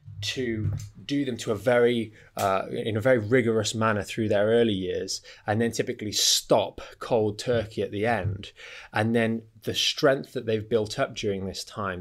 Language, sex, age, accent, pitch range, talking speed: English, male, 20-39, British, 105-120 Hz, 180 wpm